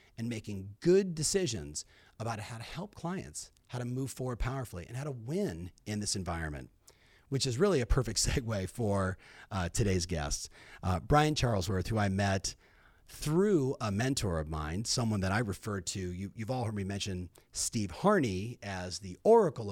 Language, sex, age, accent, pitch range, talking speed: English, male, 40-59, American, 95-135 Hz, 175 wpm